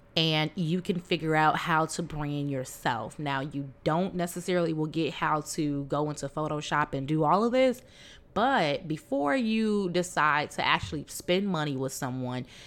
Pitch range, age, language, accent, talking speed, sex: 145-180 Hz, 20-39, English, American, 165 wpm, female